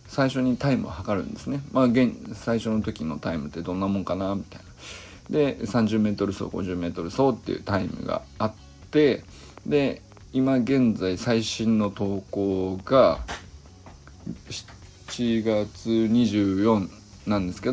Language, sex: Japanese, male